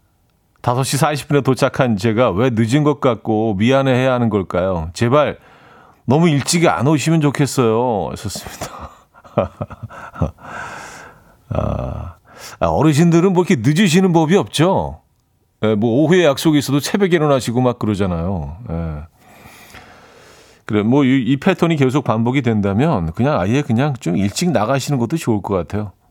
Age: 40-59